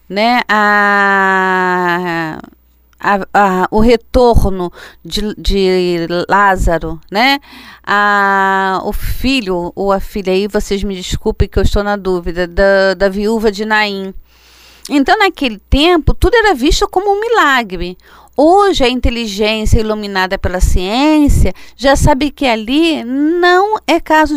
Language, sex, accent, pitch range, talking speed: Portuguese, female, Brazilian, 195-290 Hz, 130 wpm